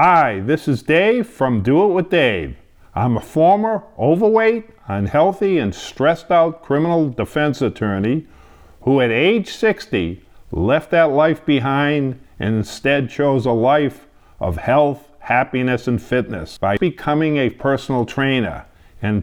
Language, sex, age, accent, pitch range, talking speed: English, male, 50-69, American, 125-170 Hz, 135 wpm